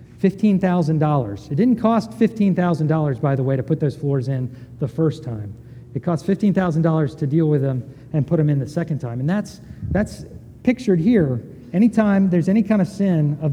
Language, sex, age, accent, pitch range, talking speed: English, male, 40-59, American, 140-180 Hz, 185 wpm